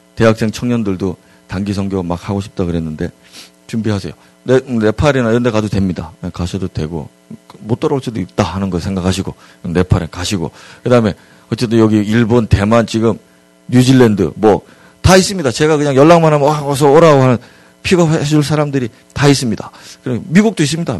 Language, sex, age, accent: Korean, male, 40-59, native